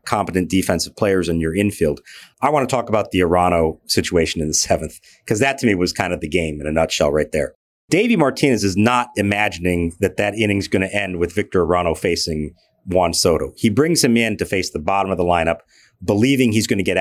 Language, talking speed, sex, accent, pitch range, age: English, 225 wpm, male, American, 90-115 Hz, 40-59